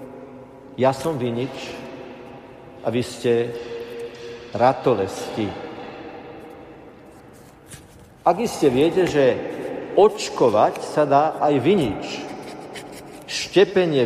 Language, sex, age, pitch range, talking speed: Slovak, male, 50-69, 120-160 Hz, 75 wpm